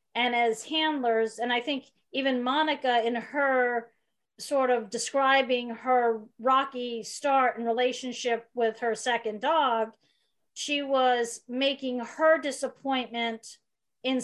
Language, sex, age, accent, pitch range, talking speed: English, female, 40-59, American, 235-275 Hz, 120 wpm